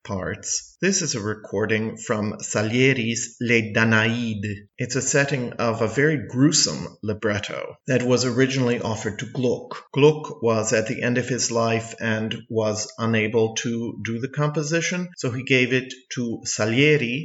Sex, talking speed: male, 155 wpm